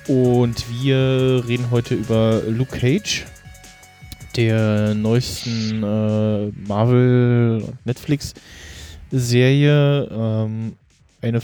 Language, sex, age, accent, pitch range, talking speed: German, male, 20-39, German, 105-125 Hz, 65 wpm